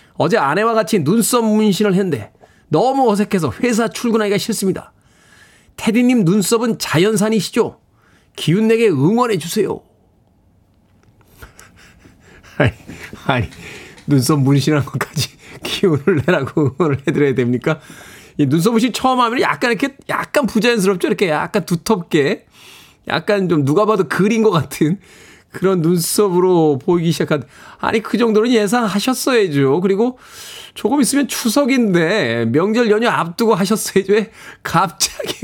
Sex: male